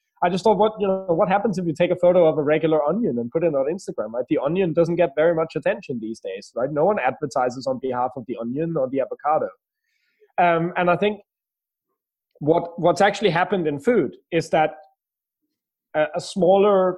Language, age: English, 30-49